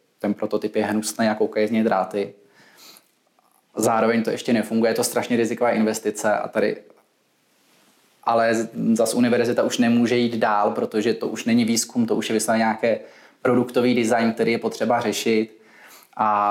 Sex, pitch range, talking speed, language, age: male, 105-115 Hz, 155 wpm, Czech, 20-39